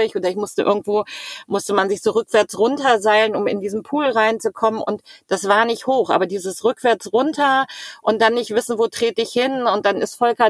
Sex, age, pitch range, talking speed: female, 50-69, 195-225 Hz, 205 wpm